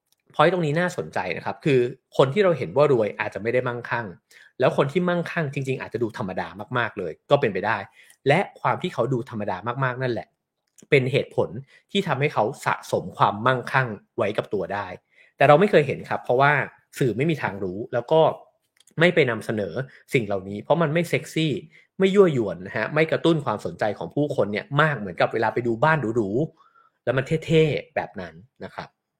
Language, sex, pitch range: English, male, 115-165 Hz